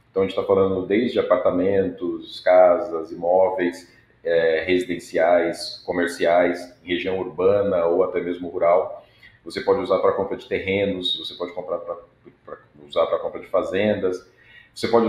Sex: male